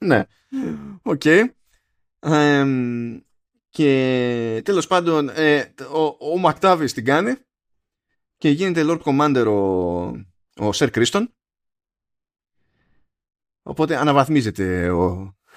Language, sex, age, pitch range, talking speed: Greek, male, 20-39, 105-165 Hz, 80 wpm